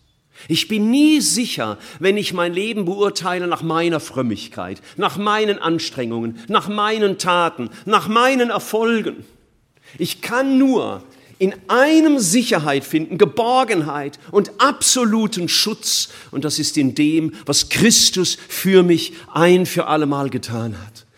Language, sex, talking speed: German, male, 130 wpm